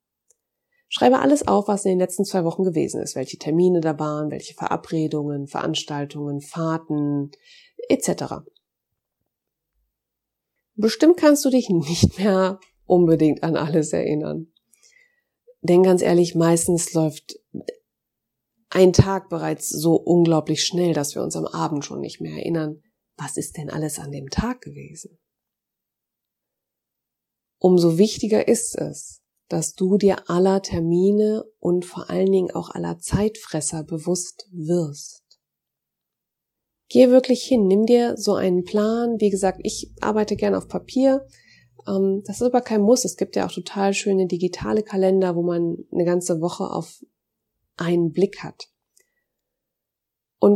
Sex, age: female, 30-49